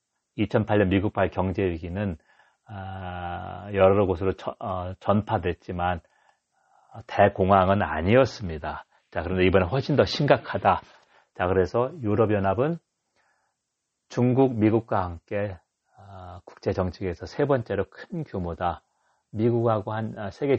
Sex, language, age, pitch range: male, Korean, 40-59, 90-120 Hz